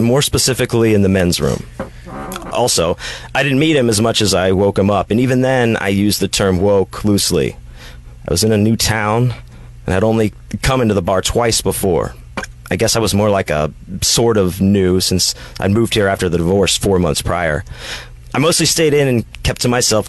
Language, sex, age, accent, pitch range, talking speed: English, male, 30-49, American, 85-110 Hz, 210 wpm